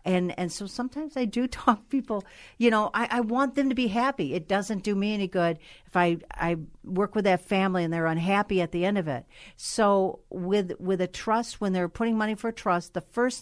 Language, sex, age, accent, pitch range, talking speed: English, female, 50-69, American, 165-215 Hz, 230 wpm